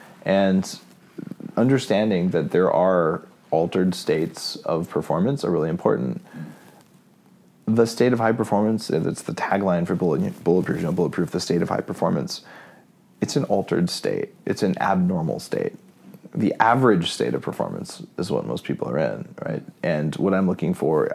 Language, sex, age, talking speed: English, male, 30-49, 160 wpm